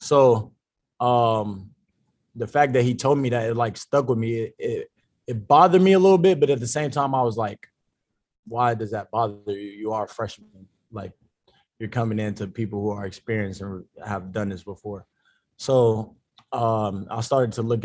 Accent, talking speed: American, 195 wpm